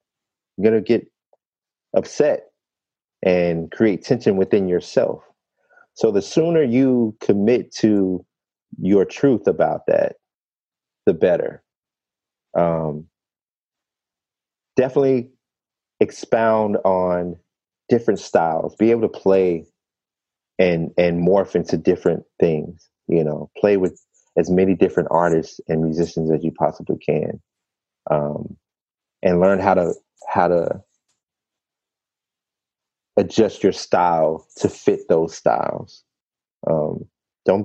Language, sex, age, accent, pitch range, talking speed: English, male, 30-49, American, 85-100 Hz, 105 wpm